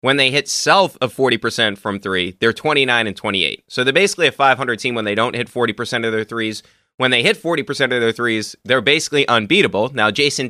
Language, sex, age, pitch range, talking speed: English, male, 30-49, 115-165 Hz, 215 wpm